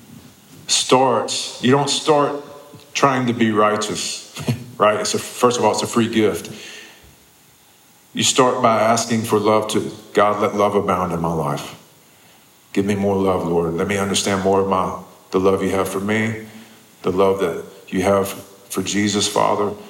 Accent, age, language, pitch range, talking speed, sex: American, 40-59, Russian, 95-115 Hz, 170 wpm, male